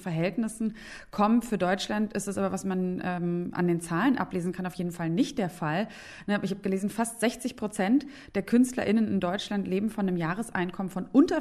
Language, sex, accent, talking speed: German, female, German, 195 wpm